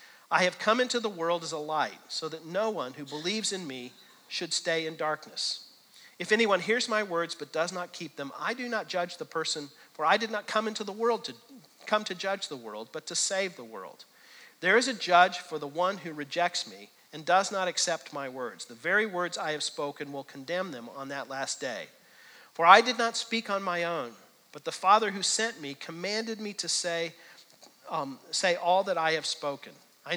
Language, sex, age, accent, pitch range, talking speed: English, male, 50-69, American, 150-205 Hz, 220 wpm